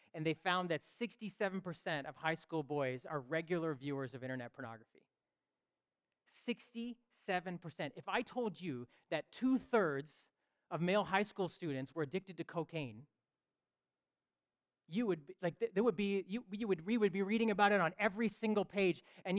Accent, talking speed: American, 160 wpm